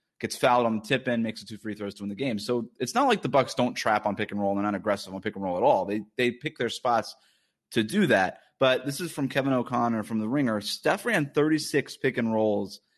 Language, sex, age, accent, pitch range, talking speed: English, male, 20-39, American, 105-125 Hz, 275 wpm